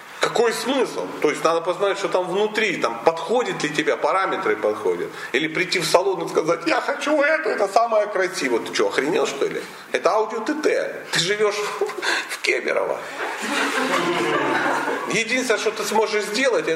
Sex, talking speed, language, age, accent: male, 165 wpm, Russian, 40-59, native